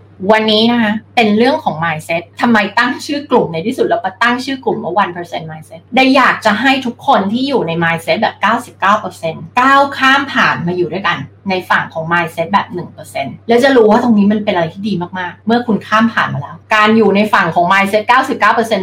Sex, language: female, Thai